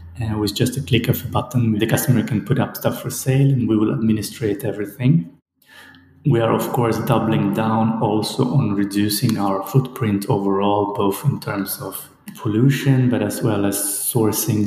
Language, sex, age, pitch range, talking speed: German, male, 30-49, 105-125 Hz, 180 wpm